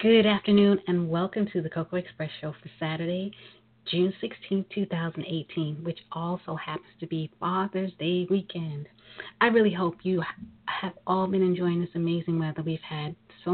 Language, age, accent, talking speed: English, 40-59, American, 160 wpm